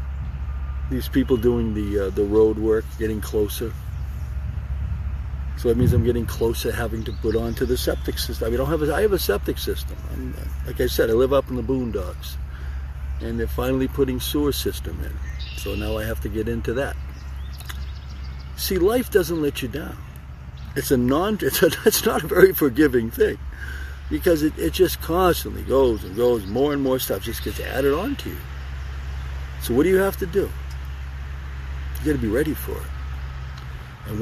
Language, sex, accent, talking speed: English, male, American, 200 wpm